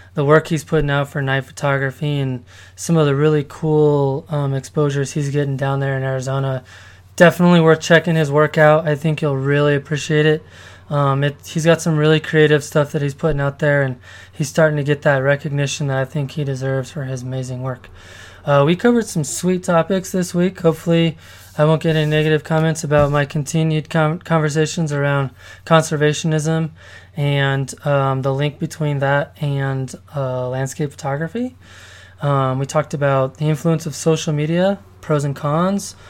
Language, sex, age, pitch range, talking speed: English, male, 20-39, 135-160 Hz, 175 wpm